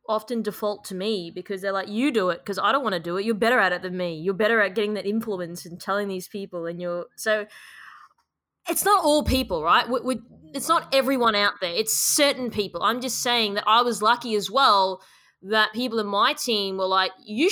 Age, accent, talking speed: 20-39, Australian, 225 wpm